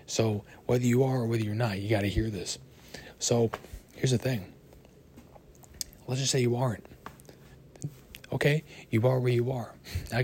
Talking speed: 170 wpm